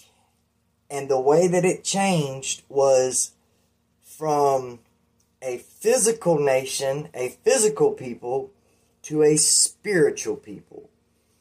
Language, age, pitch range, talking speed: English, 20-39, 125-165 Hz, 95 wpm